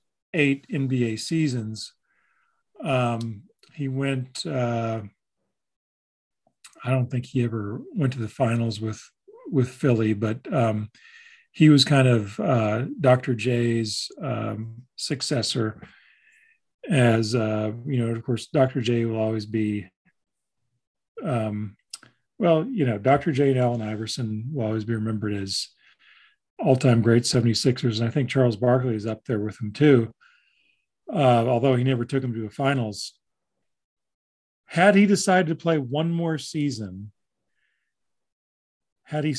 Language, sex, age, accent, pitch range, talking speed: English, male, 40-59, American, 115-145 Hz, 135 wpm